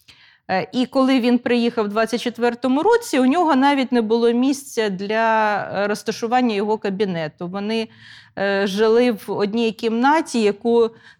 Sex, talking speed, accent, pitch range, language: female, 125 wpm, native, 205-245 Hz, Ukrainian